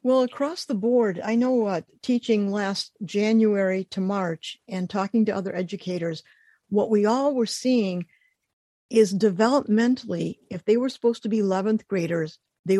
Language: English